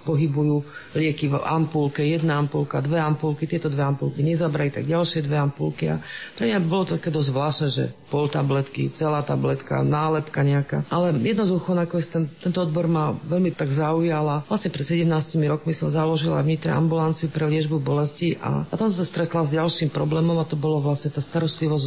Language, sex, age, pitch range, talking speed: Slovak, female, 40-59, 150-165 Hz, 180 wpm